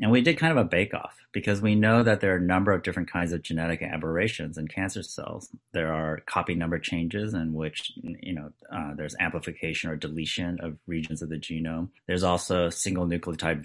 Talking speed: 205 wpm